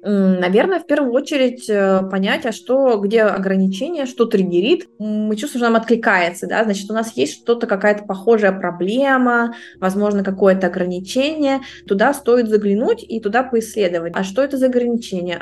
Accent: native